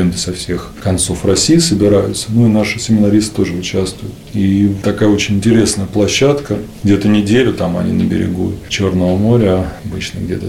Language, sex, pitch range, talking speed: Russian, male, 95-115 Hz, 150 wpm